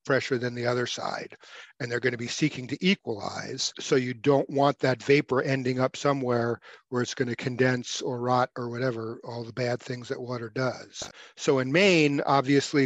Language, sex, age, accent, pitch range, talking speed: English, male, 50-69, American, 125-140 Hz, 195 wpm